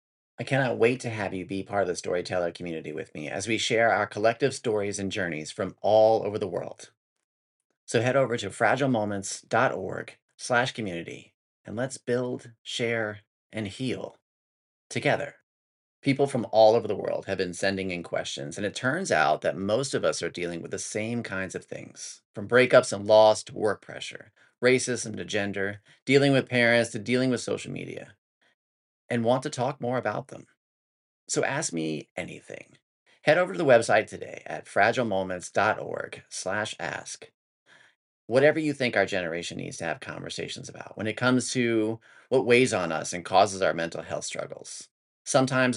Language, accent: English, American